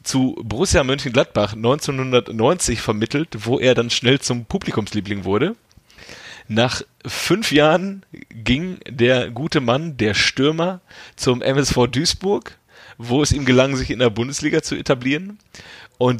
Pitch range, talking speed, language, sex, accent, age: 115-145 Hz, 130 wpm, German, male, German, 30-49